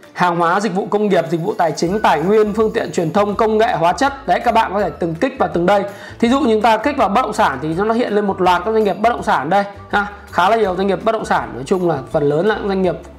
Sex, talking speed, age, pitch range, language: male, 315 wpm, 20-39, 185-225 Hz, Vietnamese